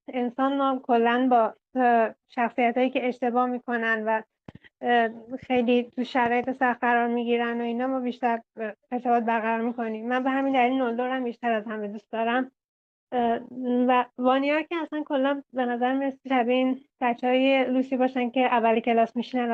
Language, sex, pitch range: Persian, female, 230-255 Hz